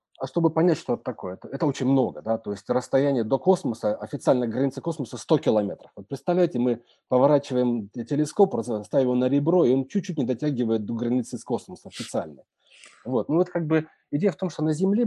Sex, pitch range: male, 115-150 Hz